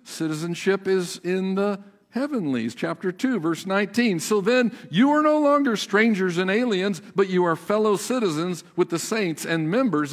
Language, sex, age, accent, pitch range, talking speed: English, male, 50-69, American, 155-240 Hz, 165 wpm